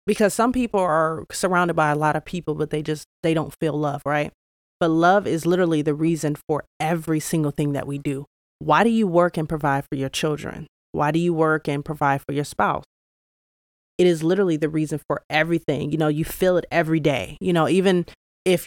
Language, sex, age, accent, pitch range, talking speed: English, female, 30-49, American, 150-180 Hz, 215 wpm